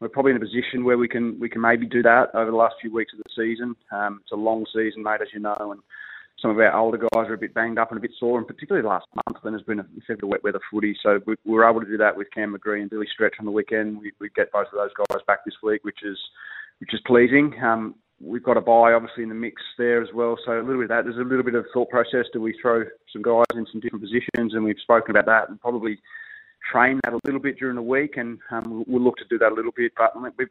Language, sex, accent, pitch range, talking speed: English, male, Australian, 105-120 Hz, 300 wpm